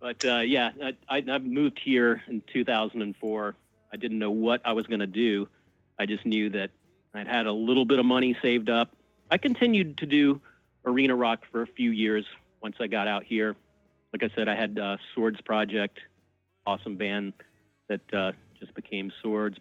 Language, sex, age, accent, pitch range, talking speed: English, male, 40-59, American, 105-120 Hz, 185 wpm